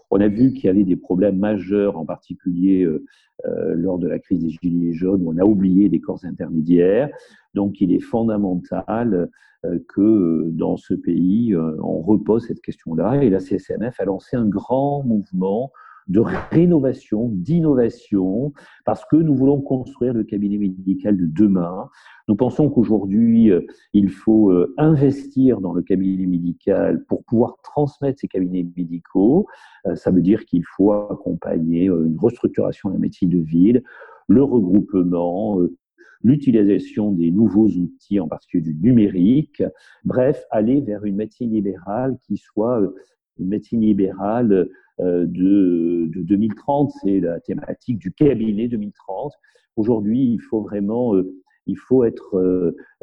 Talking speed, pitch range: 140 wpm, 95-125 Hz